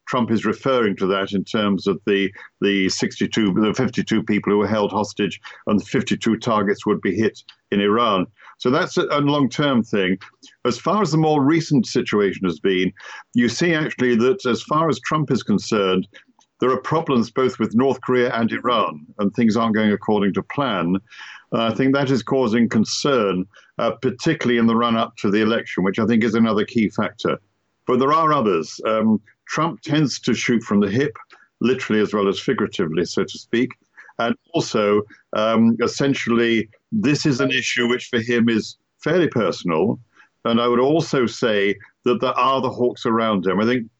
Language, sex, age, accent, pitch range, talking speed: English, male, 50-69, British, 105-130 Hz, 185 wpm